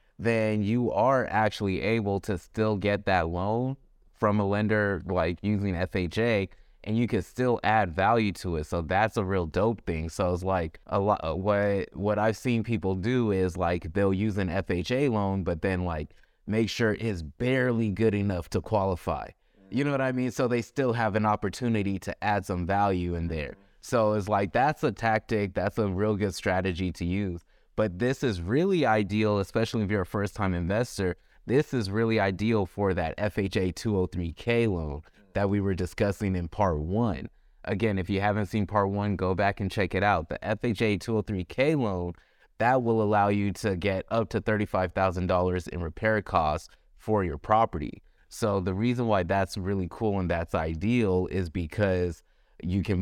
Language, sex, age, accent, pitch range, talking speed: English, male, 20-39, American, 90-110 Hz, 185 wpm